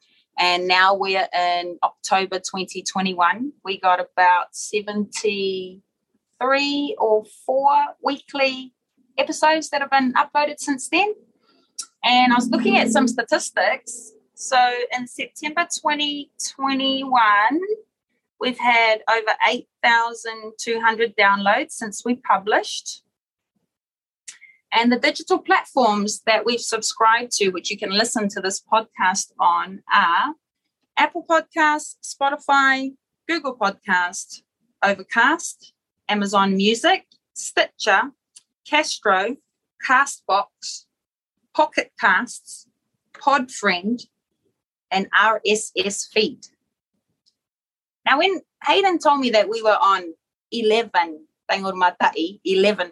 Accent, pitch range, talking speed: Australian, 200-285 Hz, 100 wpm